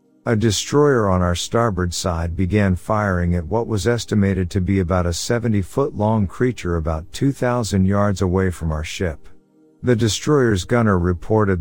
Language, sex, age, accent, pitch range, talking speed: English, male, 50-69, American, 90-115 Hz, 155 wpm